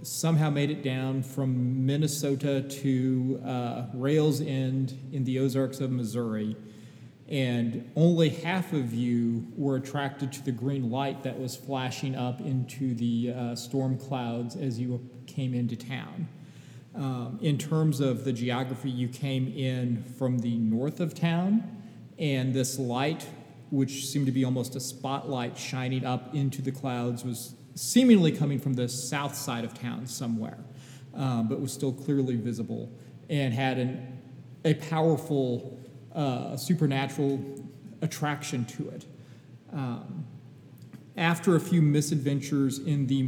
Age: 40-59